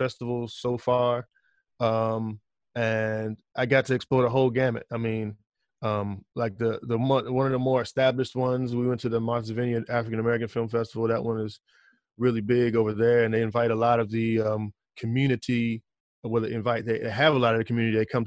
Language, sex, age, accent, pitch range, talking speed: English, male, 20-39, American, 110-125 Hz, 200 wpm